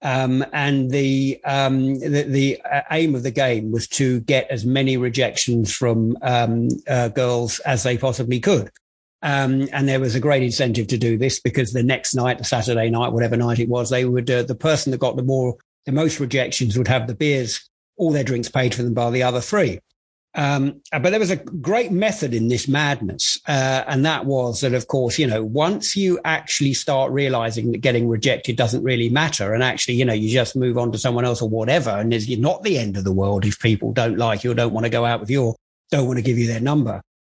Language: English